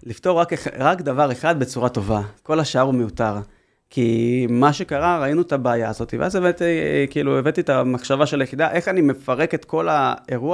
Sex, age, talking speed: male, 30-49, 180 wpm